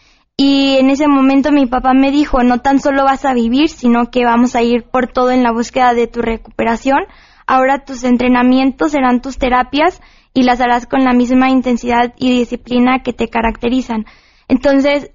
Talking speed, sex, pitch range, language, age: 180 wpm, female, 245-280 Hz, Spanish, 20-39